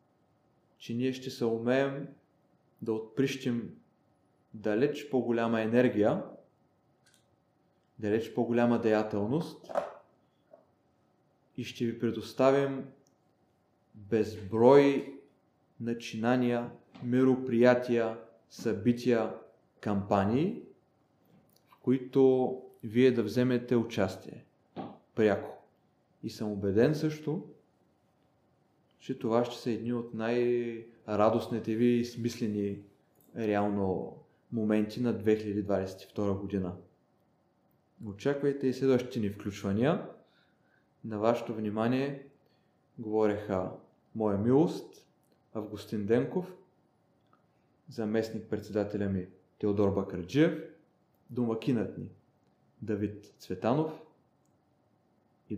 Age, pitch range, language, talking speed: 30-49, 105-130 Hz, Bulgarian, 75 wpm